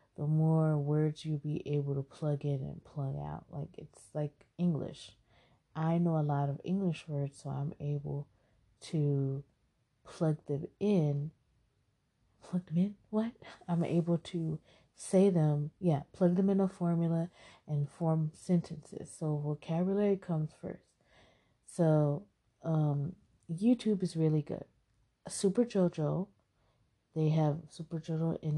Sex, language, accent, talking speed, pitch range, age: female, English, American, 135 wpm, 145-170 Hz, 30-49